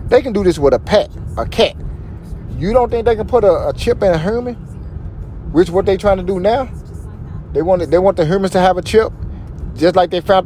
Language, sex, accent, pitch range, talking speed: English, male, American, 140-205 Hz, 250 wpm